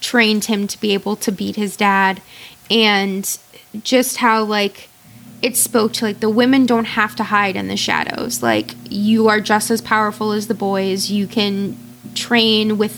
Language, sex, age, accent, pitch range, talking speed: English, female, 20-39, American, 195-225 Hz, 180 wpm